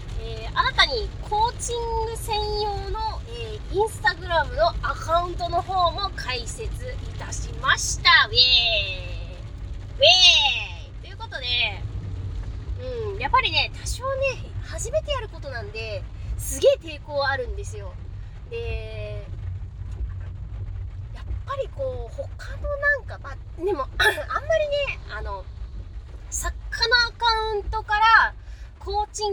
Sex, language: female, Japanese